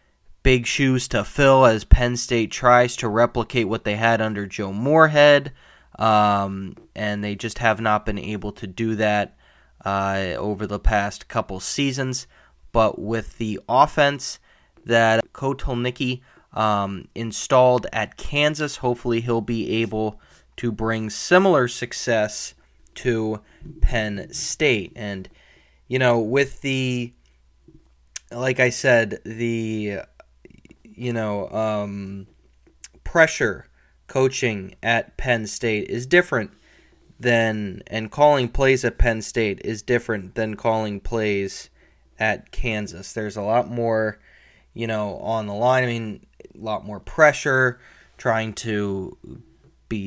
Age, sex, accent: 20-39, male, American